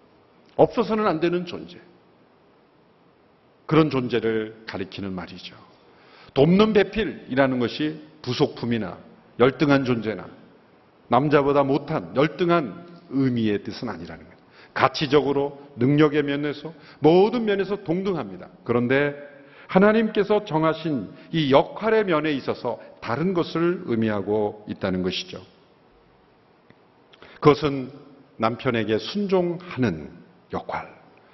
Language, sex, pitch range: Korean, male, 115-165 Hz